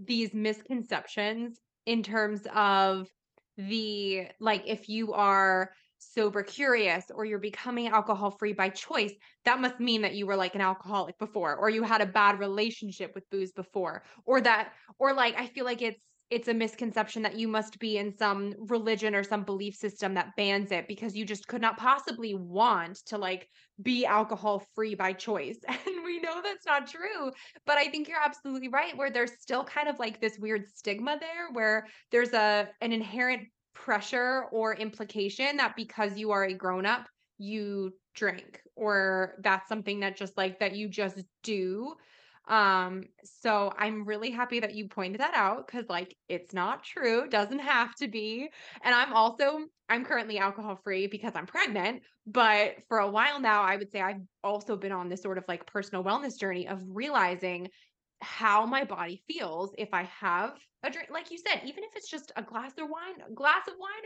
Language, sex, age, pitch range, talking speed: English, female, 20-39, 200-245 Hz, 185 wpm